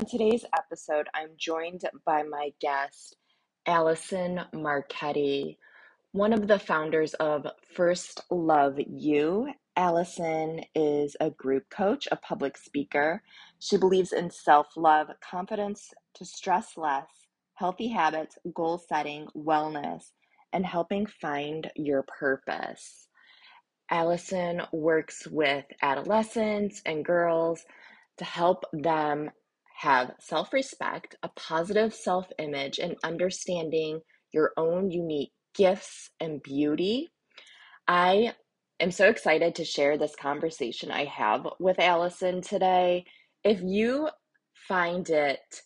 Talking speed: 110 wpm